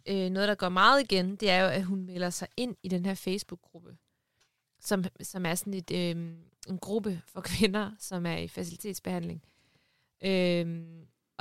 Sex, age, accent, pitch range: female, 20-39, native, 180-210 Hz